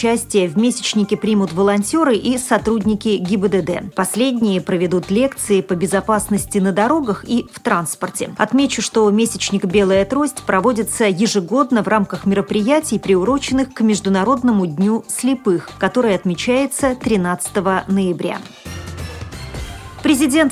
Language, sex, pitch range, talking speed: Russian, female, 195-245 Hz, 110 wpm